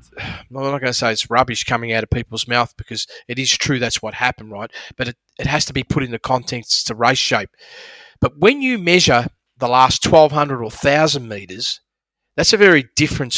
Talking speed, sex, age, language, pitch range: 210 wpm, male, 30-49, English, 120-160 Hz